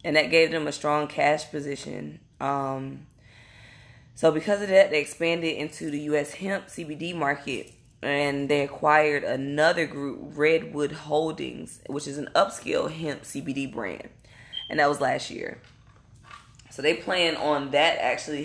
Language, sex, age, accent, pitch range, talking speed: English, female, 20-39, American, 140-170 Hz, 150 wpm